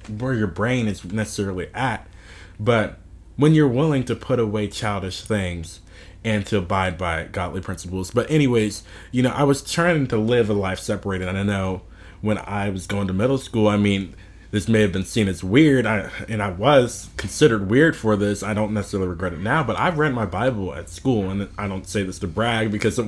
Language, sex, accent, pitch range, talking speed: English, male, American, 95-120 Hz, 215 wpm